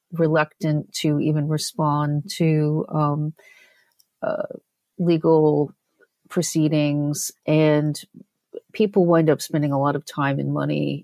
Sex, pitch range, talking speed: female, 150-175 Hz, 110 wpm